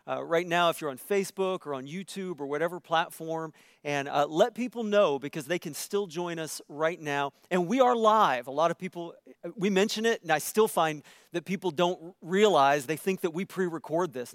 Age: 40-59